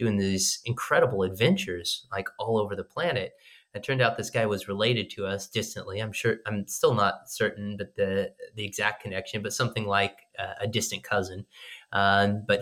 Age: 30-49